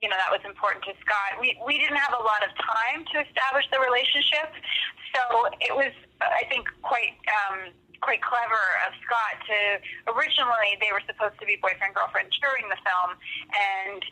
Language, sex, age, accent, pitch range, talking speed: English, female, 30-49, American, 190-235 Hz, 180 wpm